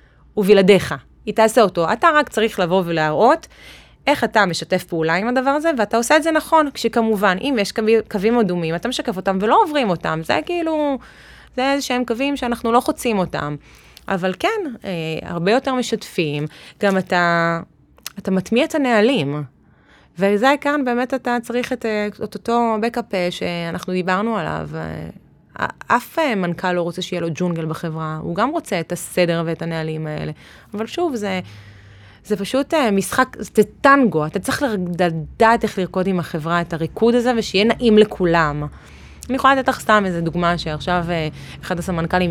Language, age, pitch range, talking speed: Hebrew, 20-39, 170-250 Hz, 160 wpm